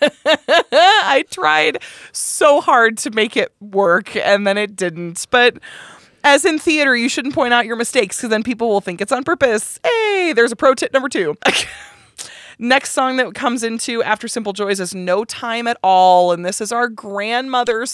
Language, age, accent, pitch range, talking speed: English, 20-39, American, 200-265 Hz, 185 wpm